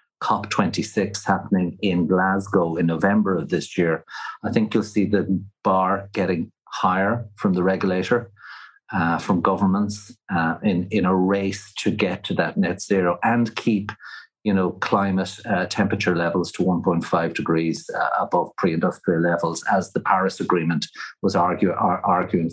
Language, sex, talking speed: English, male, 150 wpm